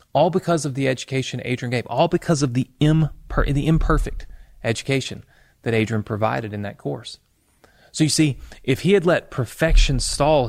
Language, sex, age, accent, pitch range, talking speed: English, male, 30-49, American, 110-145 Hz, 165 wpm